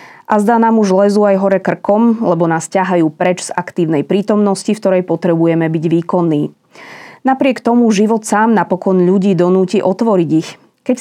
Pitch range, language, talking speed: 170-215 Hz, Slovak, 165 wpm